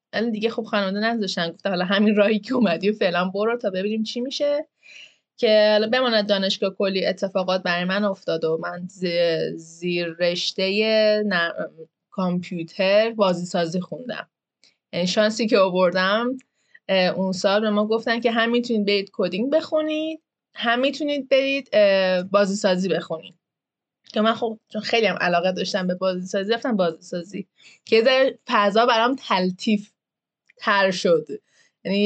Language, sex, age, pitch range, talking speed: Persian, female, 20-39, 185-240 Hz, 140 wpm